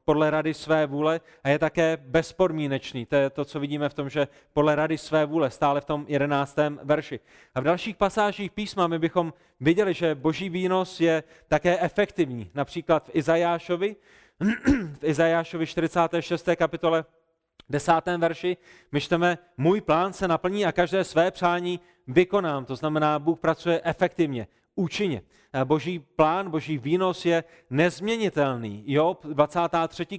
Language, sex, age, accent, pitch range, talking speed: Czech, male, 30-49, native, 150-180 Hz, 140 wpm